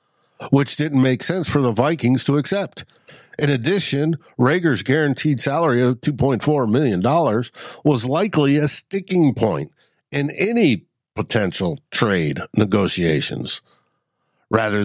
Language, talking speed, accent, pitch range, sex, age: English, 115 wpm, American, 110-150 Hz, male, 60-79